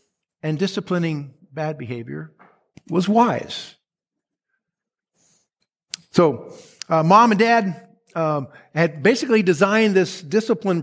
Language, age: English, 50-69